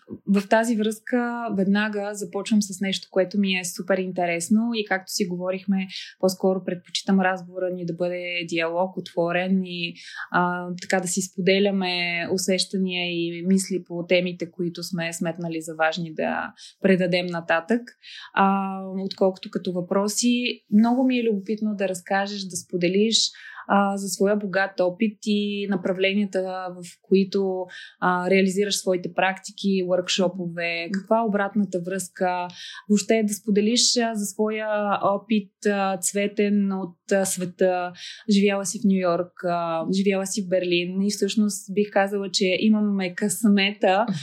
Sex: female